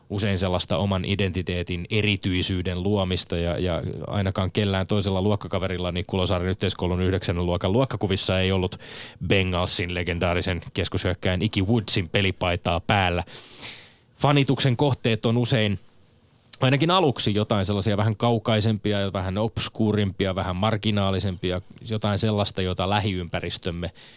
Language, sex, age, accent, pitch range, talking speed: Finnish, male, 20-39, native, 95-115 Hz, 110 wpm